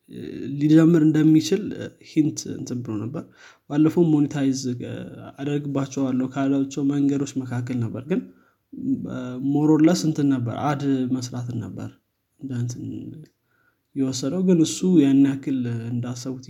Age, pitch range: 20-39, 125-150 Hz